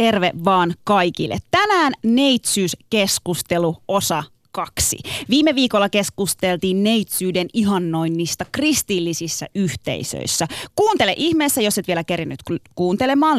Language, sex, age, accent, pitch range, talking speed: Finnish, female, 30-49, native, 175-245 Hz, 95 wpm